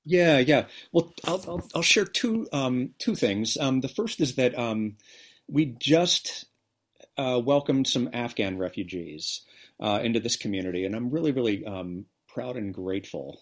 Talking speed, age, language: 160 wpm, 40-59, English